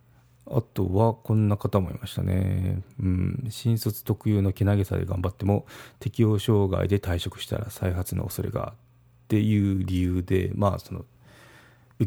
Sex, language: male, Japanese